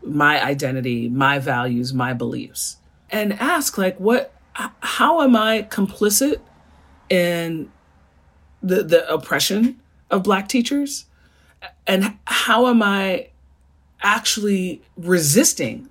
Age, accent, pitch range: 40-59, American, 155-230 Hz